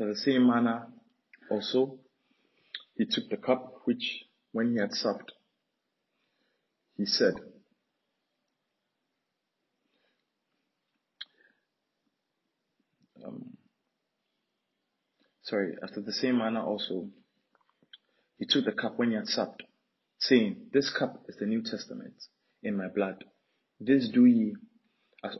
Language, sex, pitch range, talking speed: English, male, 110-135 Hz, 105 wpm